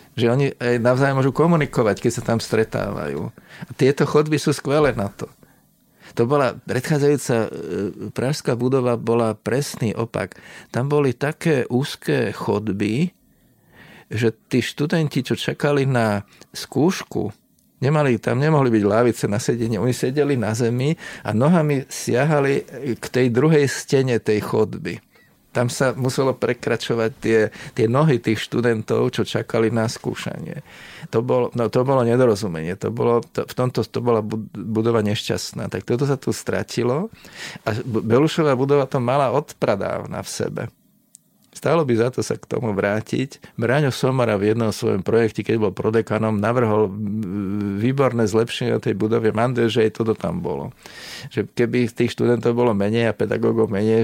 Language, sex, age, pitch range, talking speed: Slovak, male, 50-69, 110-135 Hz, 150 wpm